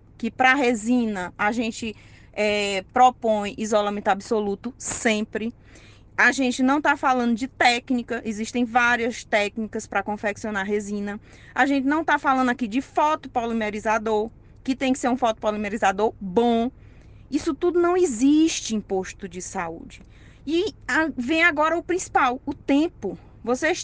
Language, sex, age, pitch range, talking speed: Portuguese, female, 20-39, 220-300 Hz, 140 wpm